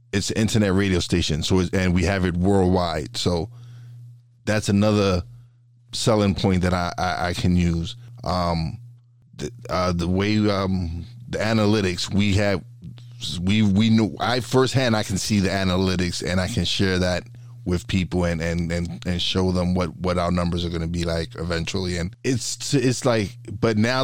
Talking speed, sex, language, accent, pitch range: 180 wpm, male, English, American, 90-110 Hz